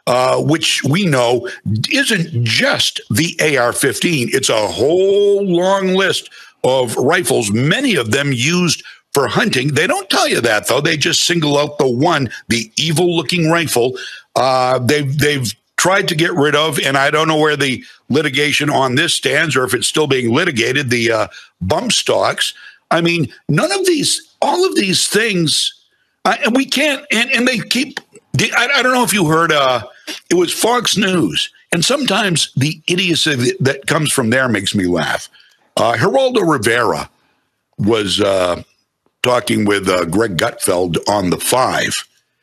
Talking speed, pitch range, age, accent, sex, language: 165 wpm, 130-190 Hz, 60-79, American, male, English